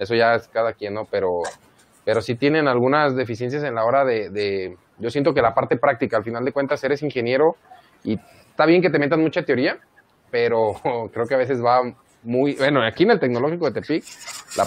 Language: Spanish